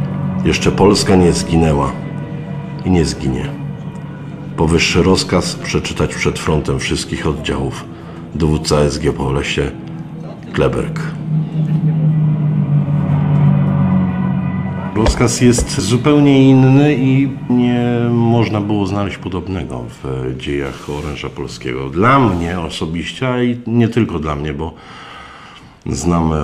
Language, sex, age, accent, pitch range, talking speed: Polish, male, 50-69, native, 85-120 Hz, 100 wpm